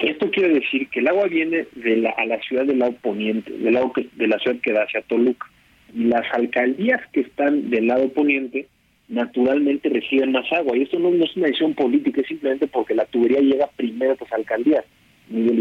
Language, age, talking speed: Spanish, 40-59, 220 wpm